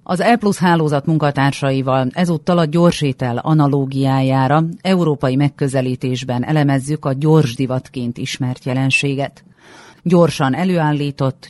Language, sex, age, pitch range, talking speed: Hungarian, female, 40-59, 130-165 Hz, 100 wpm